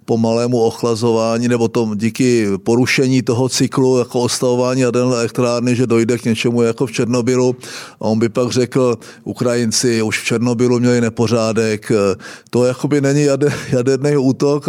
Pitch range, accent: 120-140 Hz, native